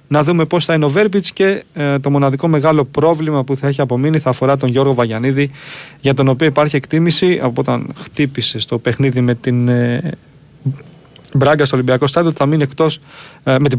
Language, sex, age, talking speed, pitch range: Greek, male, 30-49, 200 wpm, 130-160 Hz